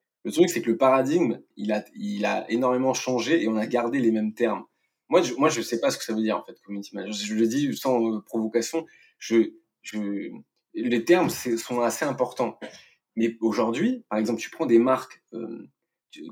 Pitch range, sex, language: 110-130 Hz, male, French